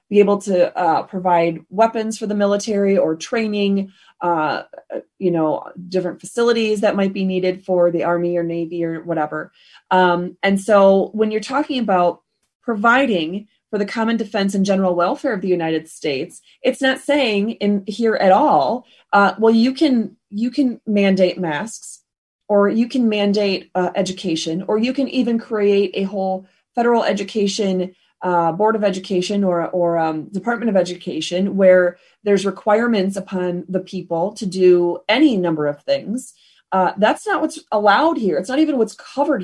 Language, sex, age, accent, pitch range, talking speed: English, female, 30-49, American, 180-230 Hz, 165 wpm